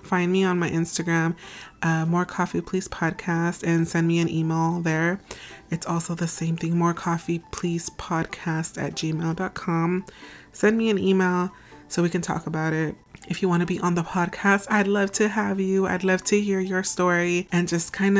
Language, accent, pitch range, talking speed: English, American, 165-195 Hz, 195 wpm